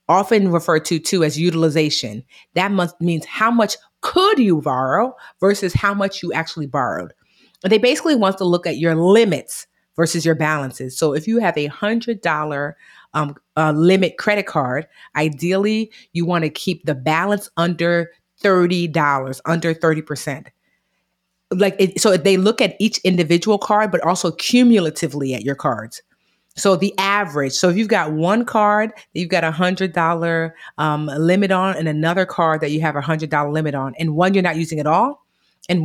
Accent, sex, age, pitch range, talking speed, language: American, female, 30-49, 155-200 Hz, 170 wpm, English